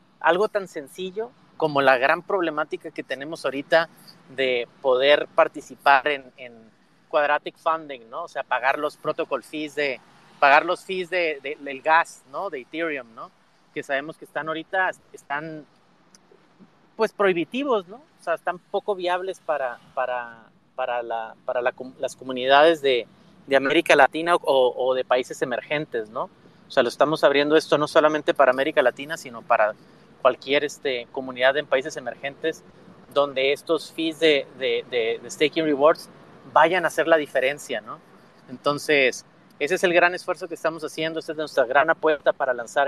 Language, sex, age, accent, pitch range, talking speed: English, male, 30-49, Mexican, 135-165 Hz, 165 wpm